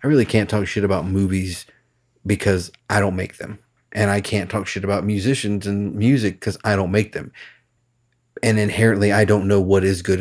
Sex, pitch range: male, 95-115 Hz